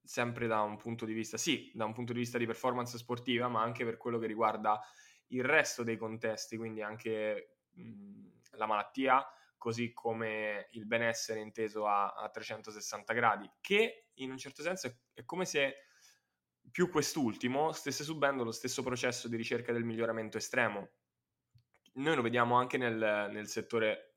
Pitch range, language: 110-120 Hz, Italian